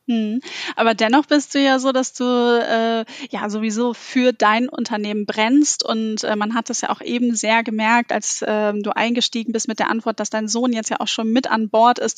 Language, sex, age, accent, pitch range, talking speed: German, female, 10-29, German, 220-260 Hz, 220 wpm